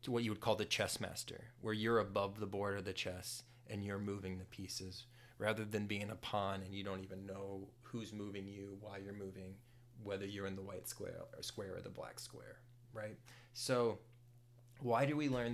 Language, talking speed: English, 210 wpm